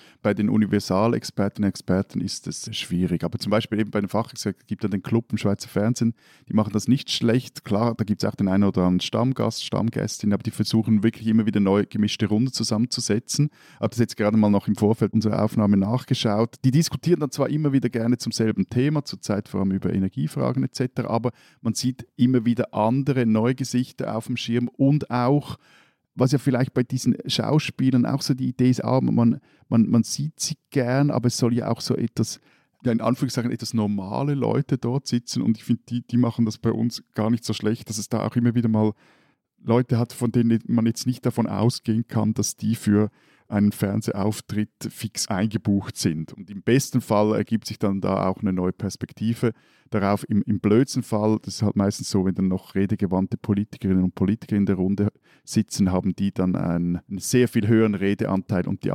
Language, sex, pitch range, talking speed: German, male, 105-125 Hz, 205 wpm